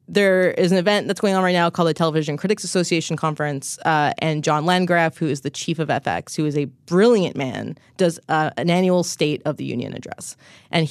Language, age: English, 20-39